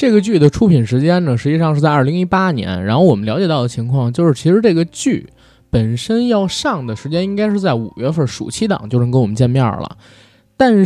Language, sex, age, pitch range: Chinese, male, 20-39, 120-180 Hz